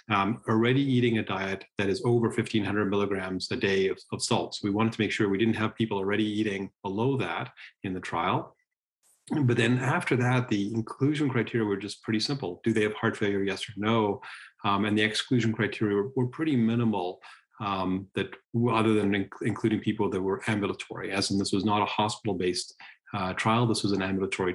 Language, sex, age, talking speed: English, male, 40-59, 200 wpm